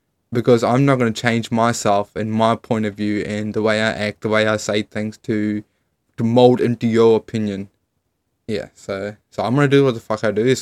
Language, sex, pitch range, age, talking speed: English, male, 110-135 Hz, 20-39, 230 wpm